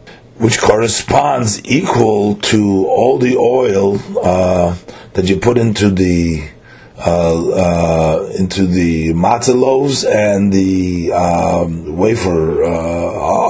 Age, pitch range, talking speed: 40-59, 85-105 Hz, 105 wpm